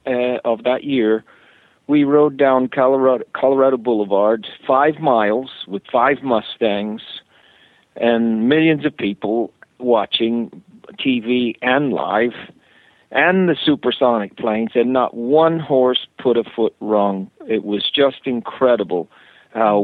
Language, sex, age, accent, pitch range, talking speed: English, male, 50-69, American, 110-140 Hz, 120 wpm